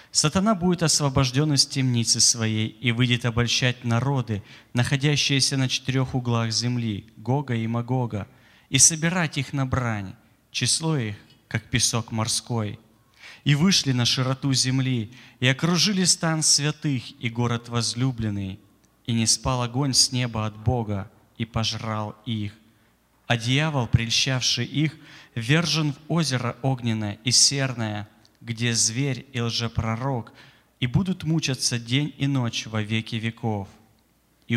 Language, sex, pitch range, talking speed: Russian, male, 115-140 Hz, 130 wpm